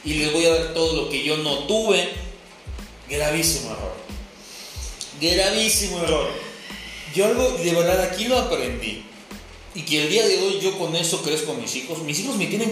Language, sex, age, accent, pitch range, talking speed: Spanish, male, 30-49, Mexican, 150-195 Hz, 185 wpm